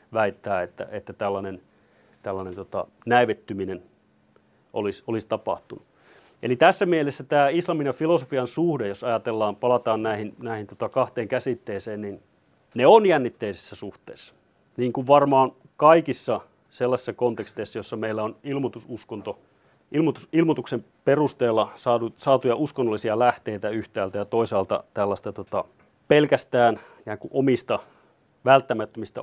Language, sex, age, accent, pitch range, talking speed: Finnish, male, 30-49, native, 110-140 Hz, 115 wpm